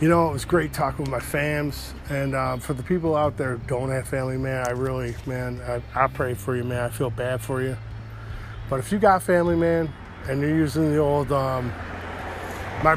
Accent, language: American, English